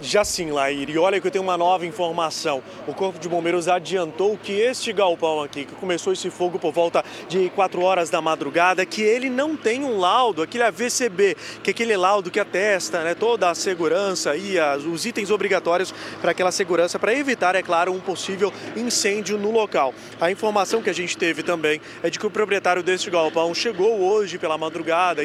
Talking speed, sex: 195 wpm, male